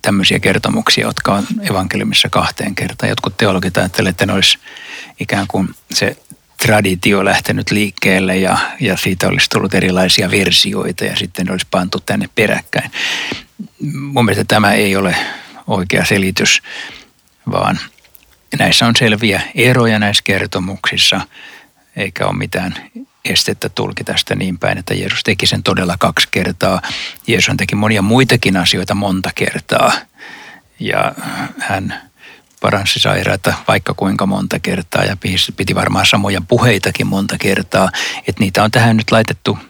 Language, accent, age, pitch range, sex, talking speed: Finnish, native, 60-79, 95-120 Hz, male, 135 wpm